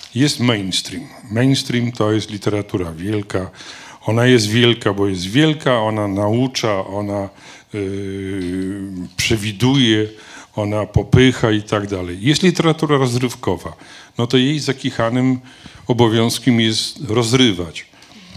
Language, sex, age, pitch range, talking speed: Polish, male, 40-59, 100-125 Hz, 105 wpm